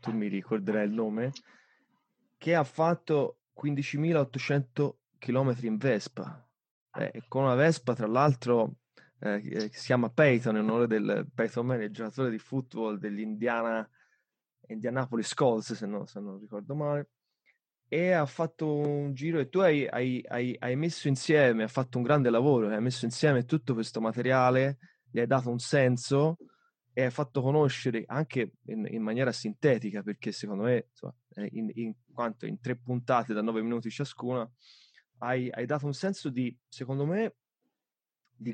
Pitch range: 115-145 Hz